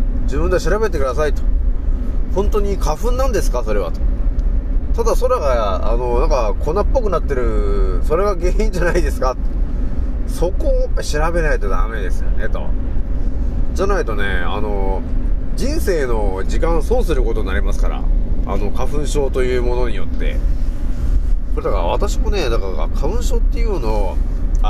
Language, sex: Japanese, male